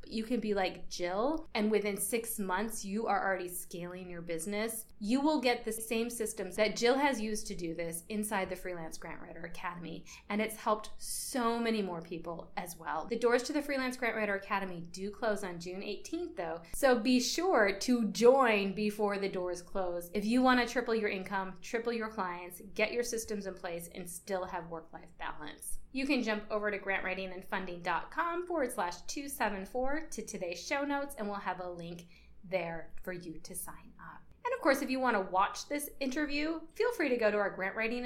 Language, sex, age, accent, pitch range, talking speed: English, female, 20-39, American, 185-245 Hz, 195 wpm